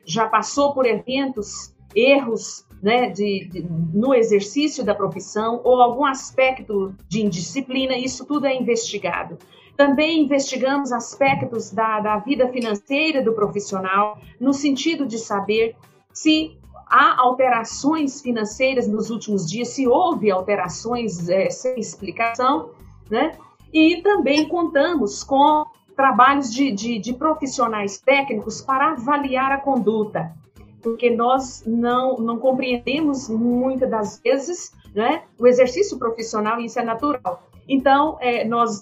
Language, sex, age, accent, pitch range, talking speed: Portuguese, female, 50-69, Brazilian, 215-275 Hz, 120 wpm